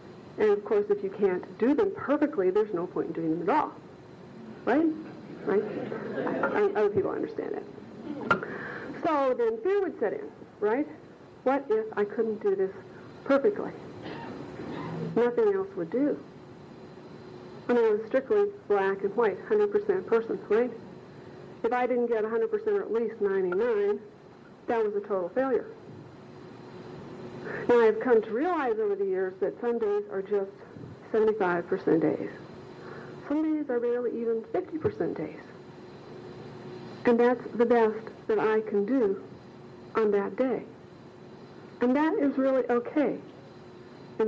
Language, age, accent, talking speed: English, 50-69, American, 145 wpm